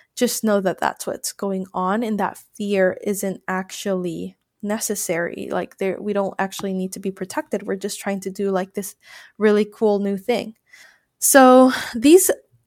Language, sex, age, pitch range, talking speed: English, female, 20-39, 190-220 Hz, 165 wpm